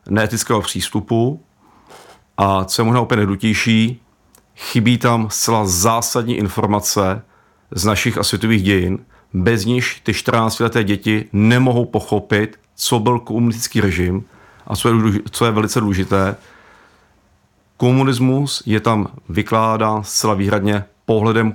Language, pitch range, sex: Czech, 100-115 Hz, male